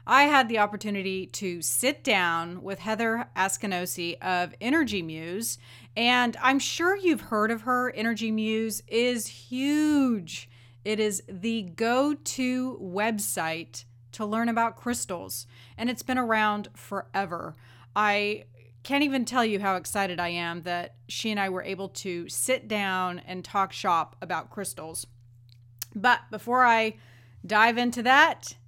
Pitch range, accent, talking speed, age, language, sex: 180-240 Hz, American, 140 wpm, 30-49, English, female